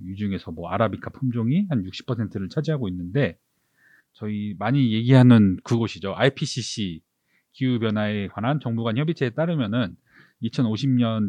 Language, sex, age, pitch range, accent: Korean, male, 30-49, 100-130 Hz, native